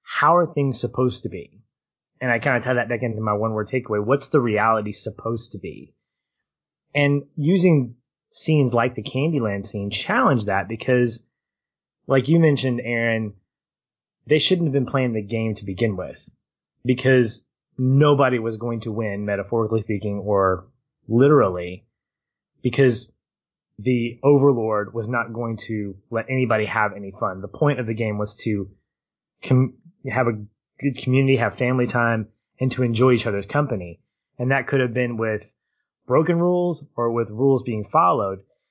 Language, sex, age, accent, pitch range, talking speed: English, male, 20-39, American, 110-135 Hz, 160 wpm